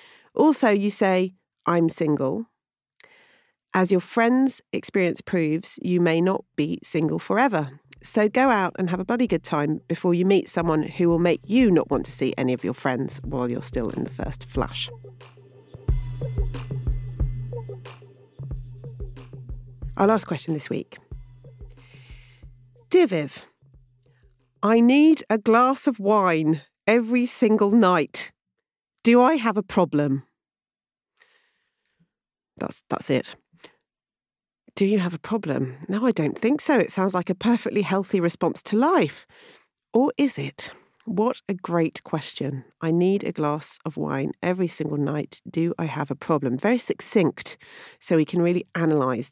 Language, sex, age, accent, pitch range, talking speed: English, female, 40-59, British, 135-215 Hz, 145 wpm